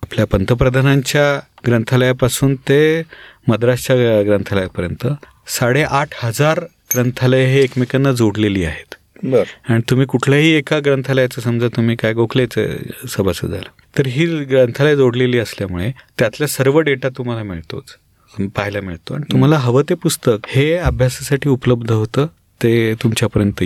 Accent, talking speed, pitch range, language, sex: native, 115 wpm, 110-140 Hz, Marathi, male